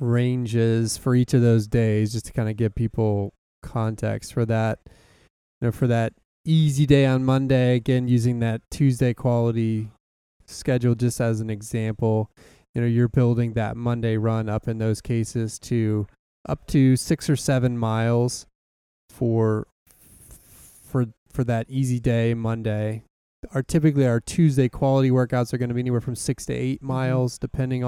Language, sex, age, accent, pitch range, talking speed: English, male, 20-39, American, 115-130 Hz, 160 wpm